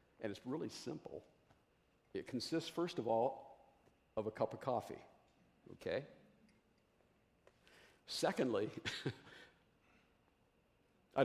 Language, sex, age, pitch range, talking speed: English, male, 50-69, 110-140 Hz, 90 wpm